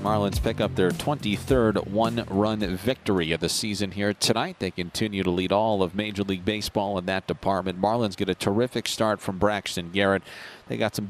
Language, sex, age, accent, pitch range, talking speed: English, male, 40-59, American, 100-130 Hz, 190 wpm